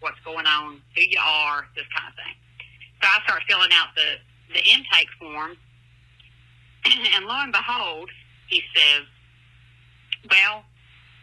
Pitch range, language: 120-160 Hz, English